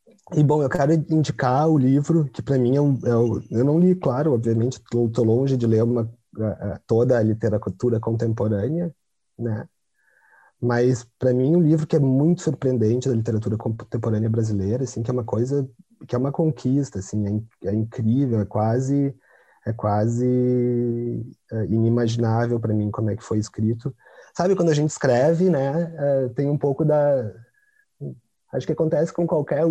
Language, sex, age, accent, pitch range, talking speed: Portuguese, male, 30-49, Brazilian, 120-155 Hz, 170 wpm